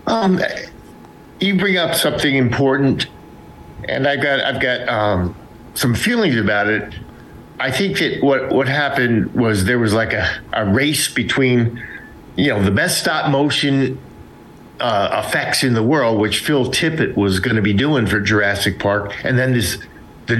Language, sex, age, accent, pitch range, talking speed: English, male, 50-69, American, 105-135 Hz, 165 wpm